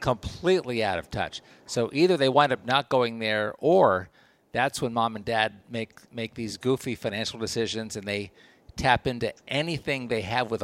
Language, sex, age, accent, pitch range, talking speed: English, male, 50-69, American, 110-145 Hz, 180 wpm